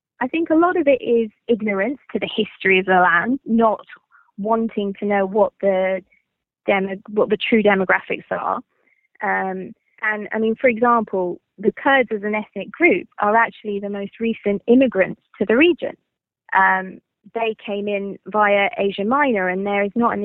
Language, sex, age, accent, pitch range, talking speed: English, female, 20-39, British, 195-235 Hz, 175 wpm